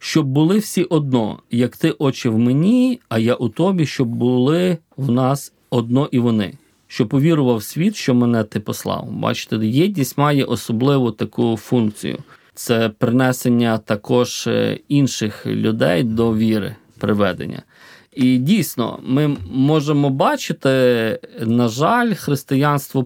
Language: Ukrainian